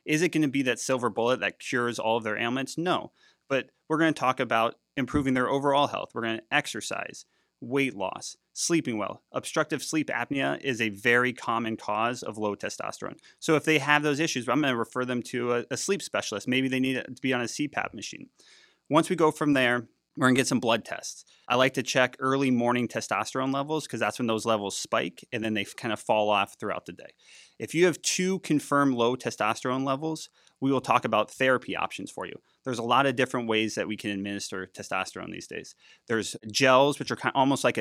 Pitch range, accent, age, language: 115-140 Hz, American, 30-49, English